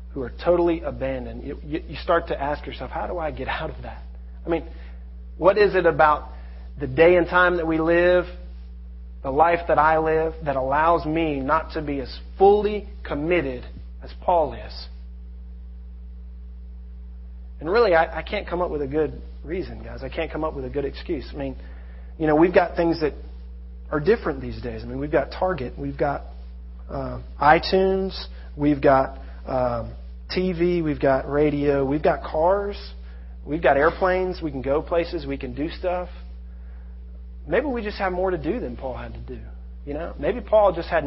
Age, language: 40-59, English